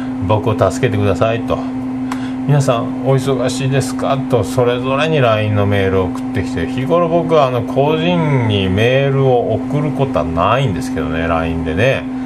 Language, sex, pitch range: Japanese, male, 125-130 Hz